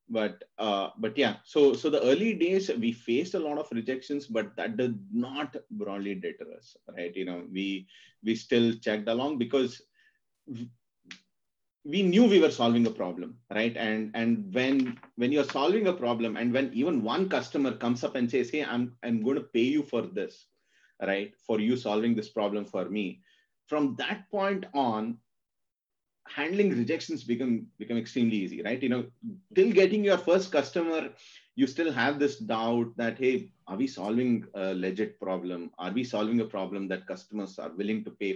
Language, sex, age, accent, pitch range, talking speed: Kannada, male, 30-49, native, 105-140 Hz, 180 wpm